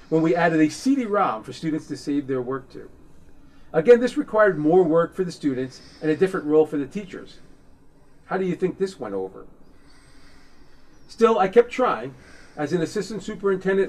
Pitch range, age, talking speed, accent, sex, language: 140-175 Hz, 40-59, 180 wpm, American, male, English